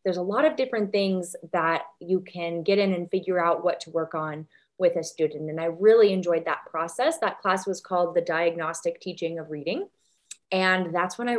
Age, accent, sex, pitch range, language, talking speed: 20-39, American, female, 170-215 Hz, English, 210 wpm